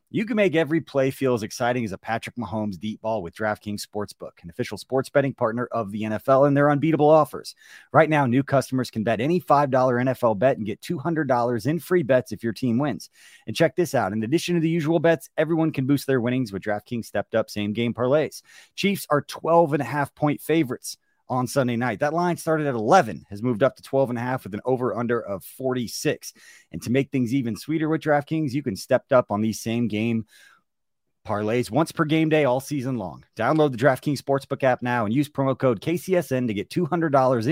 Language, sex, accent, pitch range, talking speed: English, male, American, 115-155 Hz, 220 wpm